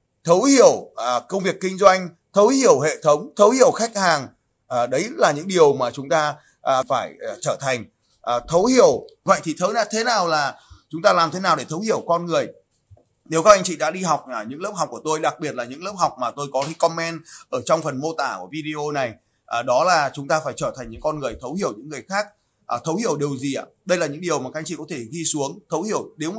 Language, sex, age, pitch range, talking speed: Vietnamese, male, 20-39, 145-190 Hz, 245 wpm